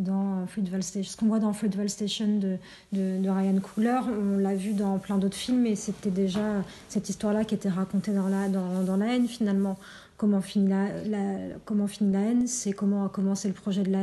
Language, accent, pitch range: French, French, 190-210 Hz